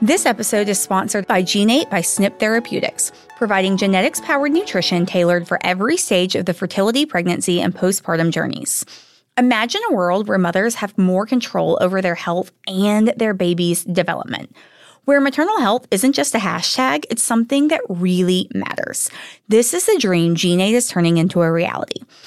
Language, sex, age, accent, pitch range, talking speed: English, female, 20-39, American, 185-260 Hz, 160 wpm